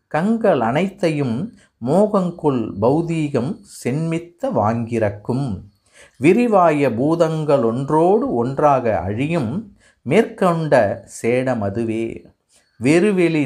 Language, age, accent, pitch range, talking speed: Tamil, 50-69, native, 115-170 Hz, 60 wpm